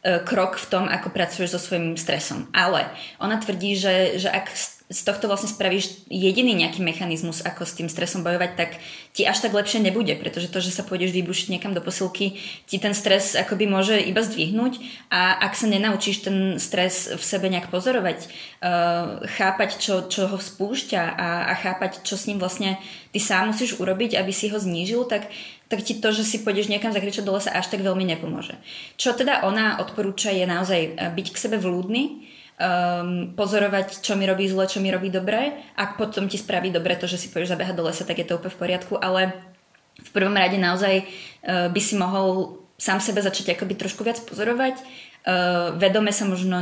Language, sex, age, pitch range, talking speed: Czech, female, 20-39, 175-200 Hz, 195 wpm